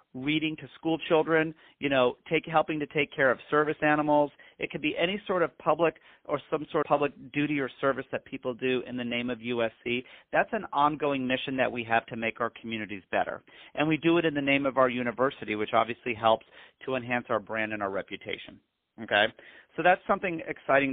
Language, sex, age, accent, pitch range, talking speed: English, male, 40-59, American, 120-150 Hz, 210 wpm